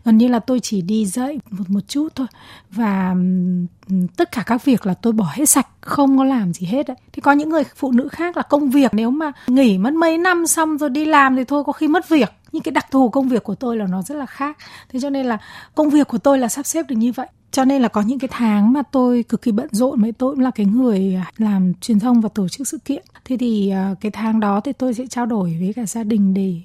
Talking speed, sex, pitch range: 275 wpm, female, 210-270 Hz